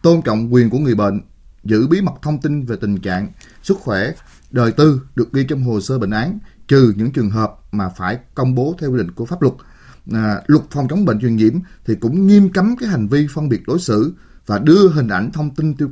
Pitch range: 110-160 Hz